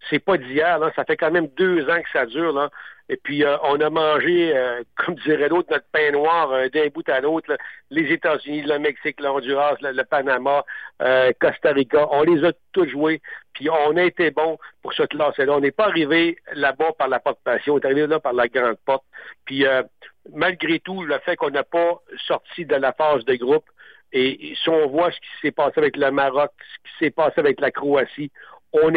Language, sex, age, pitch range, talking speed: French, male, 60-79, 135-170 Hz, 225 wpm